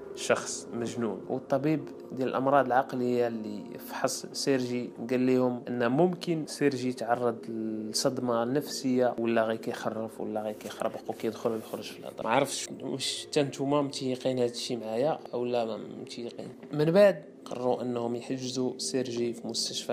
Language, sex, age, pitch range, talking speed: Arabic, male, 20-39, 115-130 Hz, 140 wpm